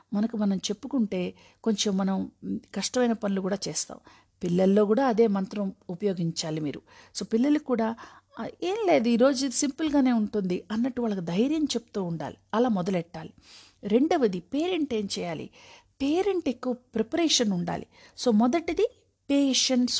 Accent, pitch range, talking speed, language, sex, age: native, 195-260 Hz, 120 wpm, Telugu, female, 50-69